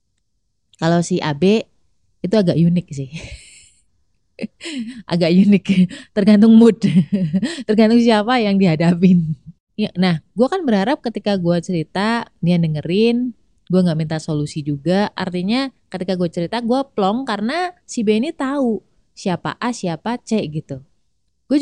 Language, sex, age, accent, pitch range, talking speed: Indonesian, female, 20-39, native, 175-235 Hz, 130 wpm